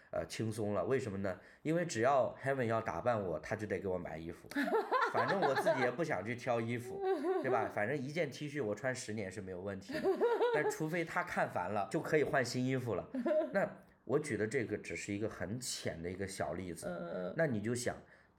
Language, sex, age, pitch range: Chinese, male, 20-39, 100-145 Hz